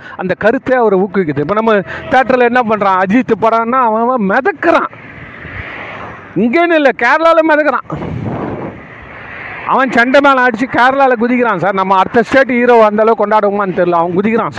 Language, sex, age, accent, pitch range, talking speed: Tamil, male, 40-59, native, 175-260 Hz, 60 wpm